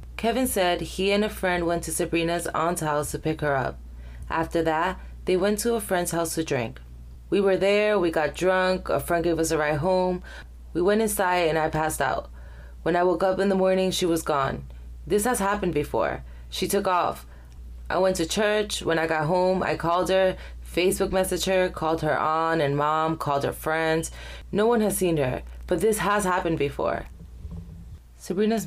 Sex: female